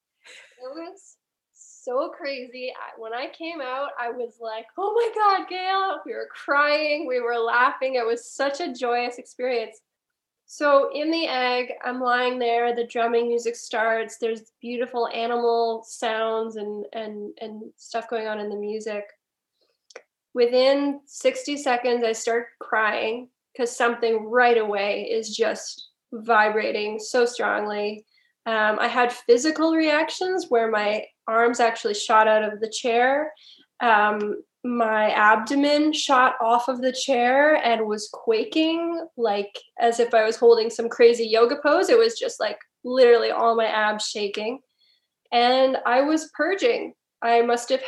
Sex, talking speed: female, 145 wpm